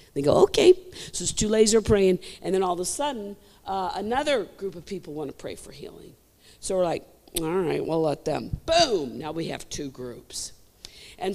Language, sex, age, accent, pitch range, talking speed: English, female, 50-69, American, 190-240 Hz, 220 wpm